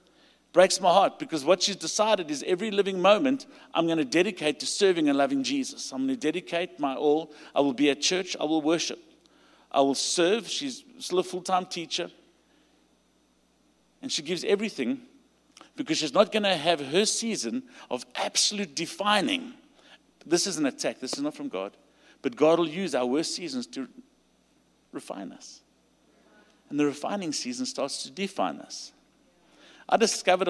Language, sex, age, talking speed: English, male, 50-69, 170 wpm